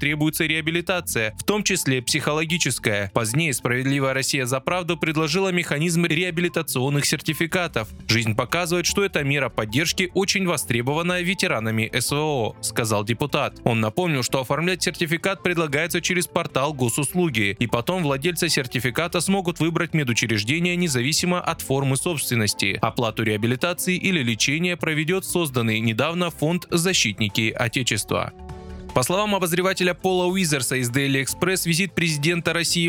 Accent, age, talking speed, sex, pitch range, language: native, 20-39, 125 wpm, male, 125-175 Hz, Russian